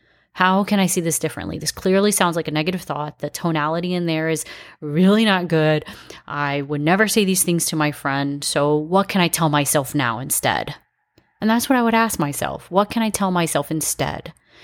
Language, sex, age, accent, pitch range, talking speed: English, female, 30-49, American, 150-190 Hz, 210 wpm